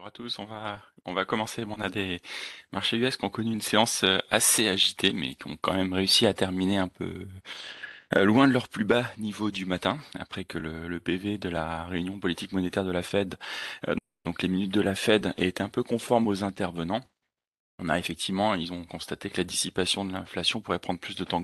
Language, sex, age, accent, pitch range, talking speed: French, male, 30-49, French, 90-110 Hz, 225 wpm